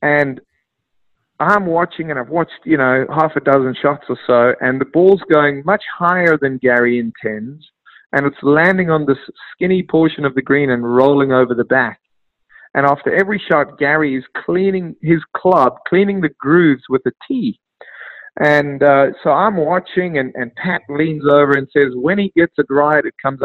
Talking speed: 185 wpm